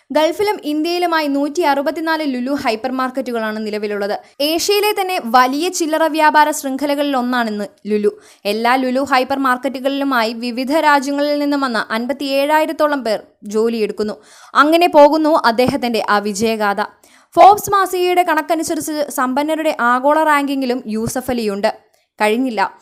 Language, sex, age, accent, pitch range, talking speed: Malayalam, female, 20-39, native, 230-295 Hz, 95 wpm